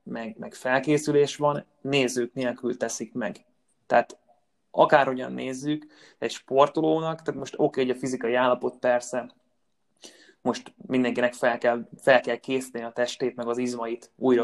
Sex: male